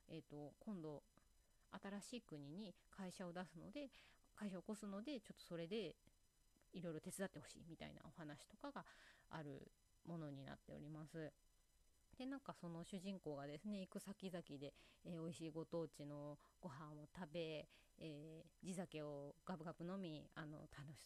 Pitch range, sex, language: 150-190 Hz, female, Japanese